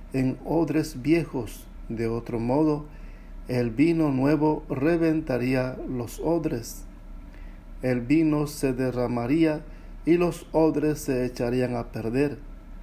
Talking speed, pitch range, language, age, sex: 110 wpm, 120-150 Hz, English, 60-79, male